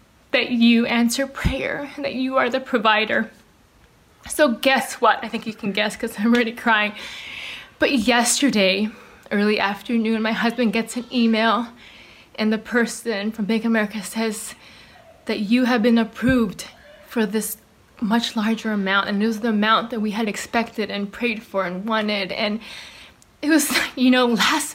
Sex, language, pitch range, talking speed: female, English, 215-245 Hz, 165 wpm